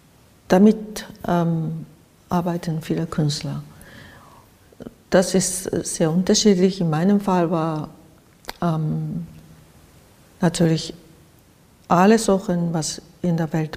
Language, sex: German, female